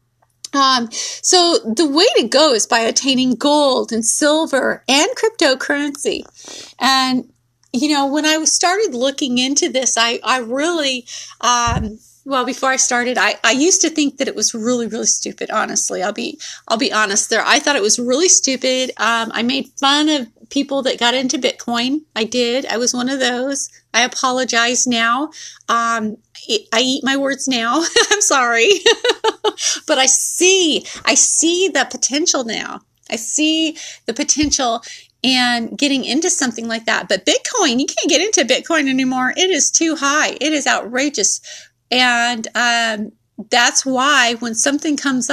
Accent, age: American, 30-49